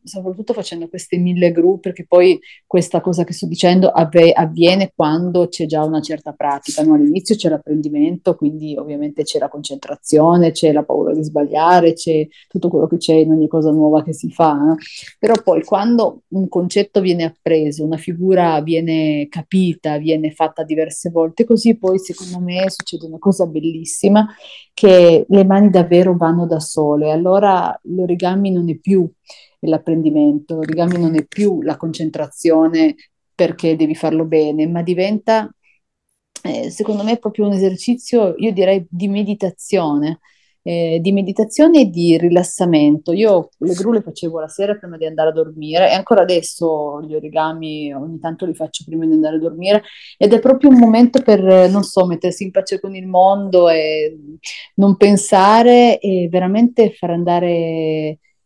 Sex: female